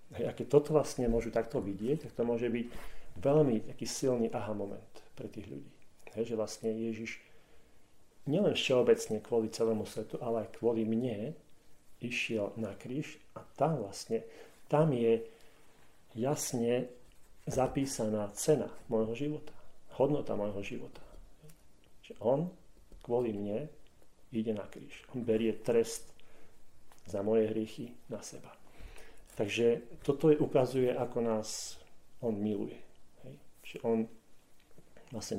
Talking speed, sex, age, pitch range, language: 125 wpm, male, 40-59, 110-125 Hz, Slovak